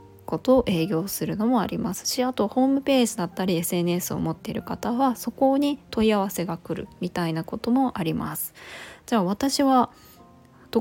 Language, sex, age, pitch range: Japanese, female, 20-39, 180-240 Hz